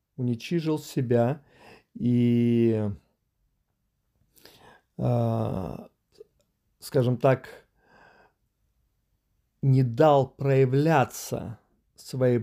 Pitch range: 120-155 Hz